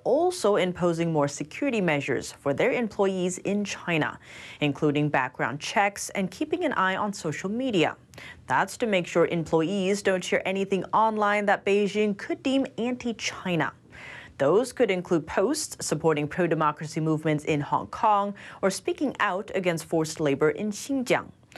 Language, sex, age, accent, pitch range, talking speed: English, female, 30-49, American, 155-220 Hz, 145 wpm